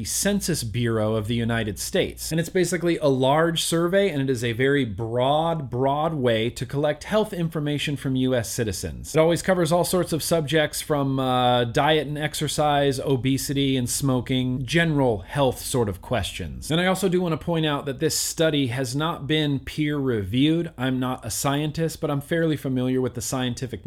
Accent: American